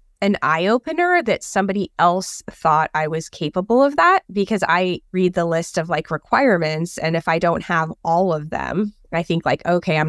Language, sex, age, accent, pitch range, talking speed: English, female, 20-39, American, 160-195 Hz, 195 wpm